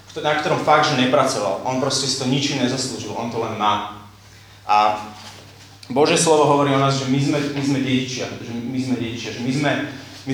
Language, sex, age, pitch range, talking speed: Slovak, male, 30-49, 120-145 Hz, 205 wpm